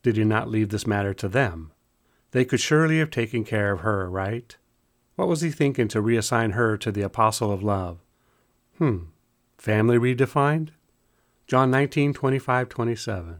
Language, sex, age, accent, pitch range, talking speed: English, male, 40-59, American, 105-125 Hz, 160 wpm